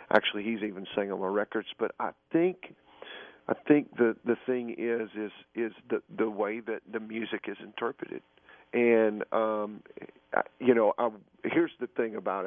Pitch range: 105-125 Hz